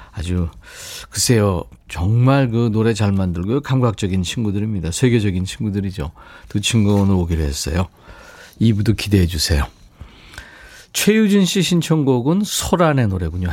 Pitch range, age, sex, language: 90-135 Hz, 40-59, male, Korean